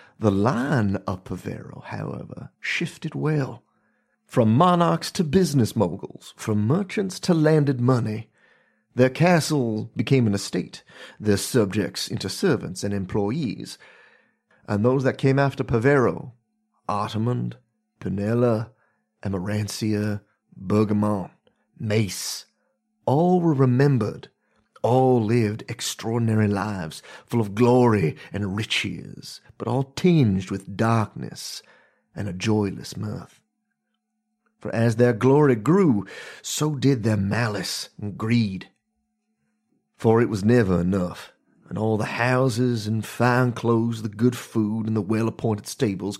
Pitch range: 105-140 Hz